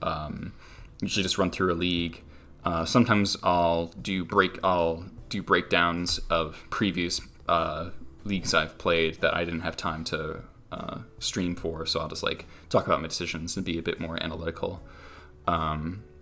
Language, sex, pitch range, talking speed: English, male, 80-100 Hz, 170 wpm